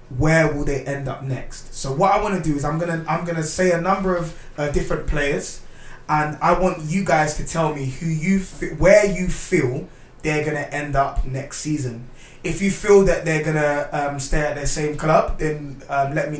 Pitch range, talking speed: 135-165 Hz, 210 wpm